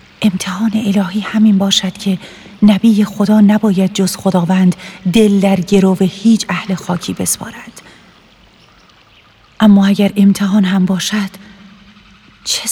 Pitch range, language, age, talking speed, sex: 185-220 Hz, Persian, 40-59, 105 wpm, female